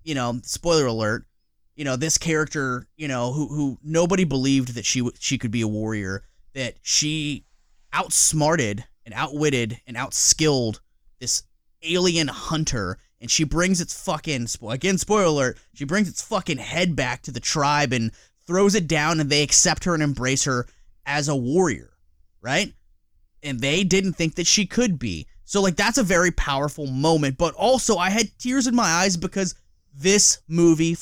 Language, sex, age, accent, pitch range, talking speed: English, male, 20-39, American, 120-170 Hz, 170 wpm